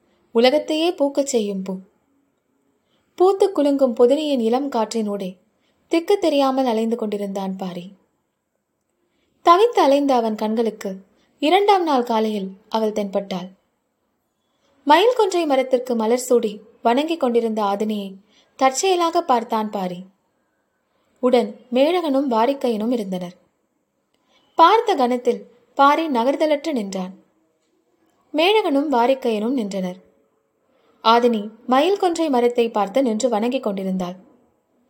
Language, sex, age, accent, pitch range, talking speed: Tamil, female, 20-39, native, 215-285 Hz, 90 wpm